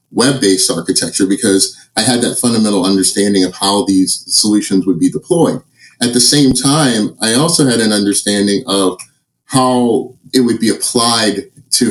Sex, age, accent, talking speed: male, 30-49, American, 160 wpm